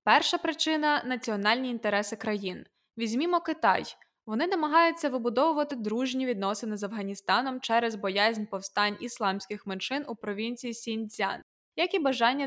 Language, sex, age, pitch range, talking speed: Ukrainian, female, 20-39, 210-280 Hz, 125 wpm